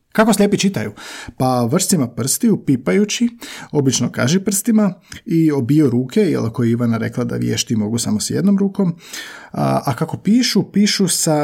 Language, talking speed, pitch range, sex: Croatian, 155 wpm, 120-175 Hz, male